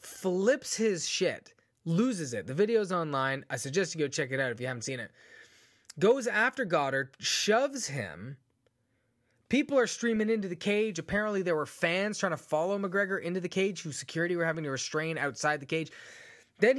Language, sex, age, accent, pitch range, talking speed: English, male, 20-39, American, 135-200 Hz, 185 wpm